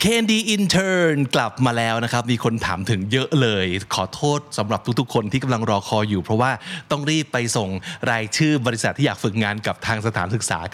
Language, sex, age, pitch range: Thai, male, 20-39, 110-155 Hz